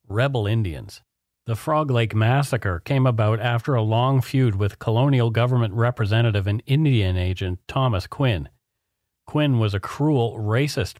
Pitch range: 105-135 Hz